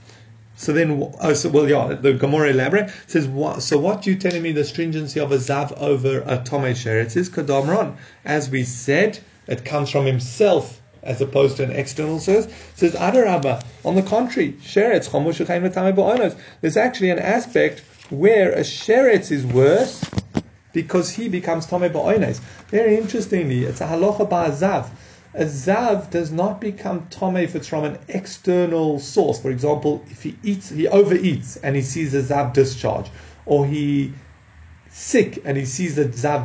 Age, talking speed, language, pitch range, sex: 30-49, 165 wpm, English, 130-180 Hz, male